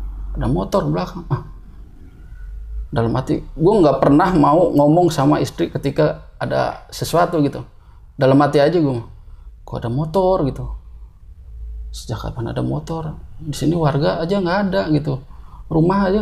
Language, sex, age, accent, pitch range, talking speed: Indonesian, male, 20-39, native, 105-170 Hz, 140 wpm